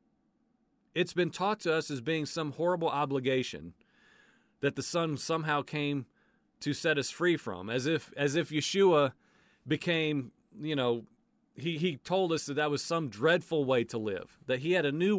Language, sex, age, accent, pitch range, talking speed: English, male, 40-59, American, 140-195 Hz, 180 wpm